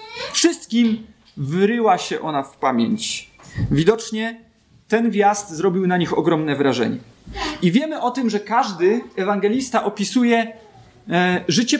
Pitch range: 170-240 Hz